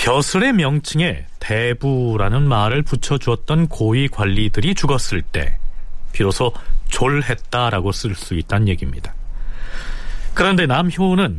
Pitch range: 105-155 Hz